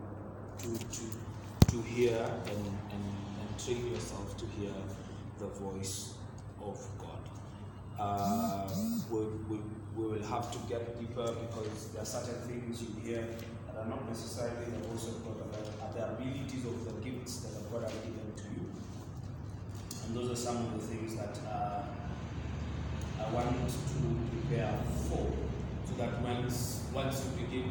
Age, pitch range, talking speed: 20-39, 105-120 Hz, 155 wpm